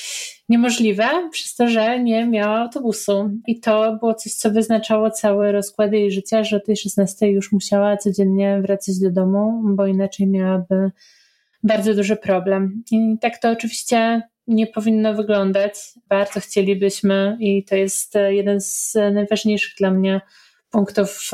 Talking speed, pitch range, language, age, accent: 145 wpm, 195-215 Hz, Polish, 30-49, native